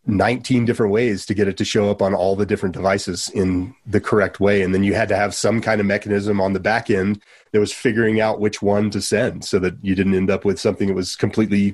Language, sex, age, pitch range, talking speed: English, male, 30-49, 95-115 Hz, 260 wpm